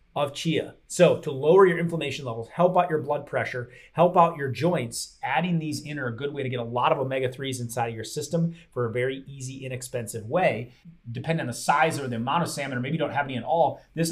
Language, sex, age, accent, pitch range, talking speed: English, male, 30-49, American, 125-170 Hz, 245 wpm